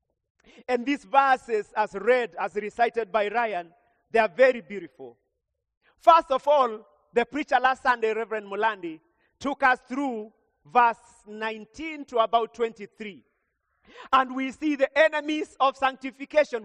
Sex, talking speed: male, 135 wpm